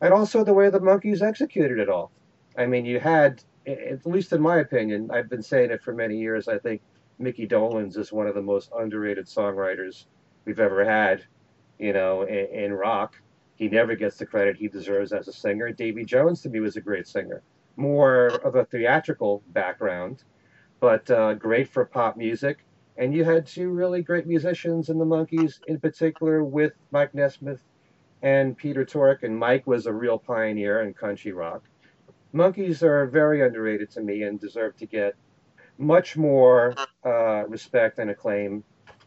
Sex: male